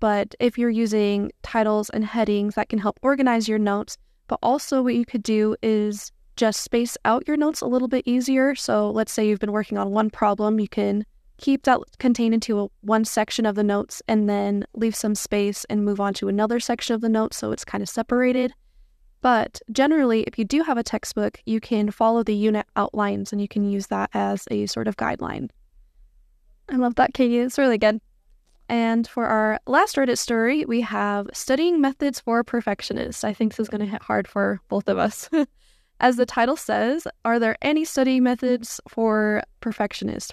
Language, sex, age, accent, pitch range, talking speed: English, female, 10-29, American, 210-245 Hz, 200 wpm